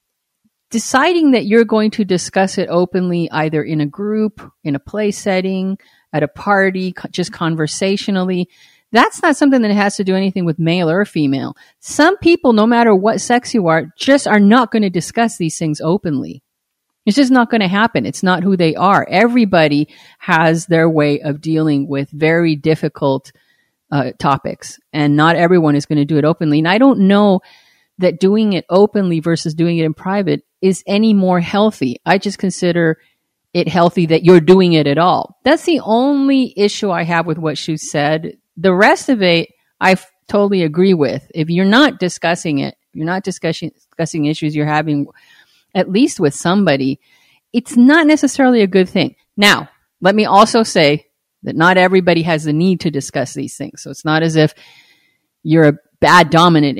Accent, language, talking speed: American, English, 185 wpm